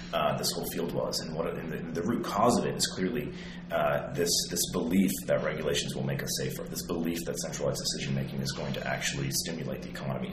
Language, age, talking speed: English, 30-49, 225 wpm